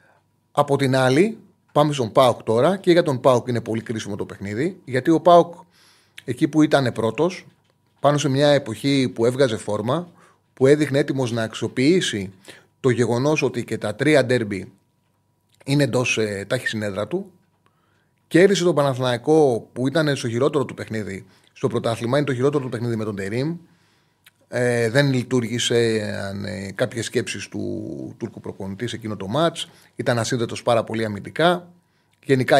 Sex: male